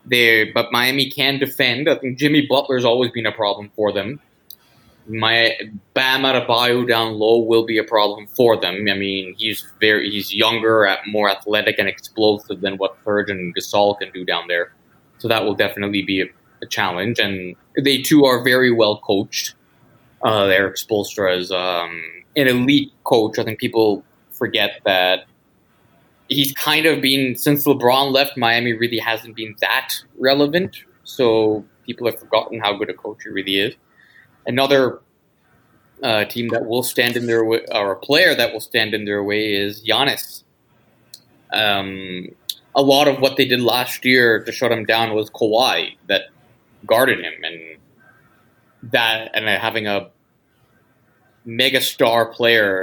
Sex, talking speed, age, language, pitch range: male, 165 wpm, 20-39, English, 100-125 Hz